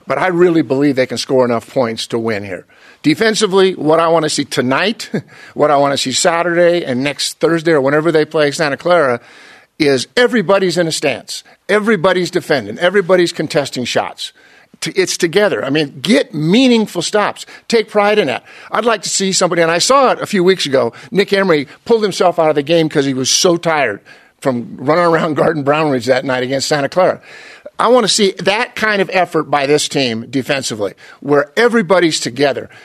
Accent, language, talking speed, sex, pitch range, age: American, English, 195 wpm, male, 150-200 Hz, 50-69